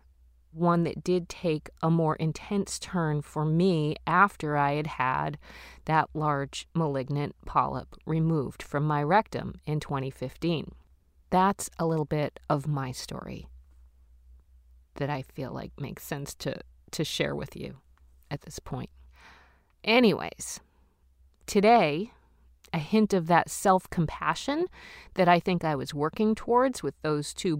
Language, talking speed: English, 135 wpm